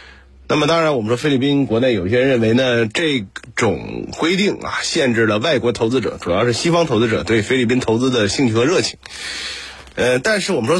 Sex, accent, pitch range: male, native, 100-160 Hz